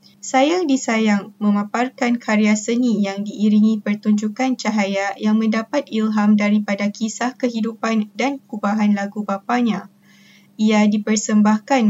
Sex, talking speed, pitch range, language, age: female, 105 wpm, 200-230 Hz, Malay, 20-39